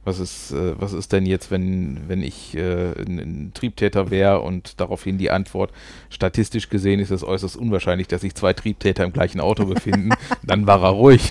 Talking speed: 190 wpm